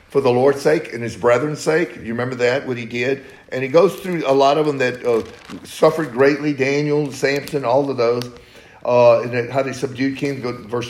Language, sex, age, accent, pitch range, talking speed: English, male, 50-69, American, 115-155 Hz, 220 wpm